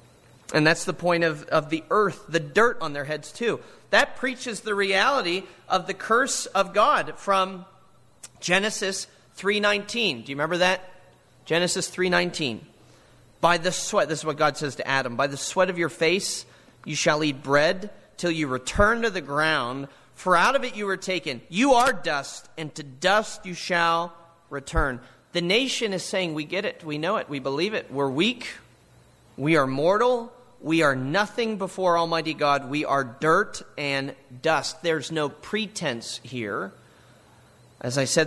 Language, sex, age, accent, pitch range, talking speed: English, male, 30-49, American, 135-185 Hz, 175 wpm